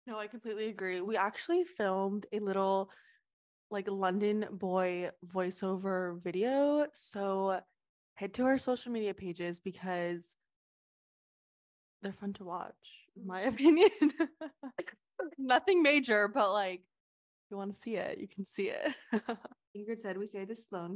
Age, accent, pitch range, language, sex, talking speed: 20-39, American, 190-235 Hz, English, female, 140 wpm